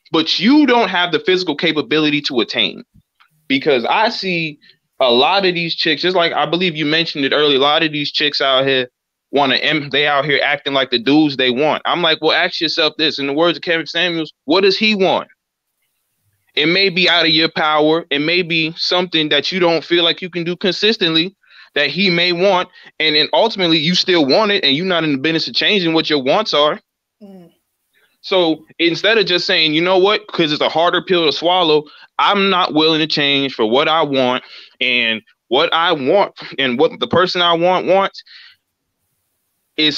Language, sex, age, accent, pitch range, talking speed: English, male, 20-39, American, 145-180 Hz, 205 wpm